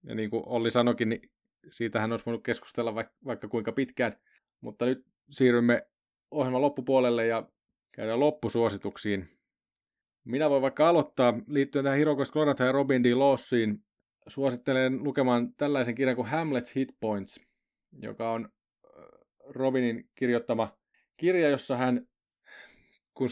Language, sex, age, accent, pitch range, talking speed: Finnish, male, 20-39, native, 115-135 Hz, 125 wpm